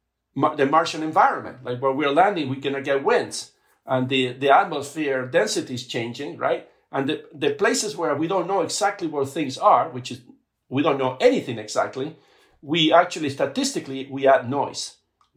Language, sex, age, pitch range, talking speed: English, male, 50-69, 130-160 Hz, 170 wpm